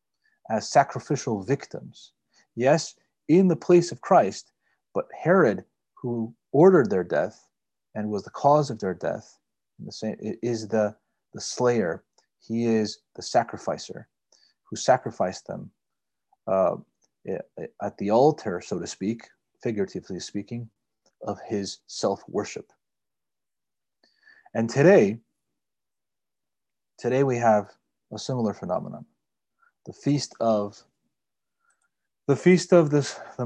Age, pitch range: 30-49, 110-135 Hz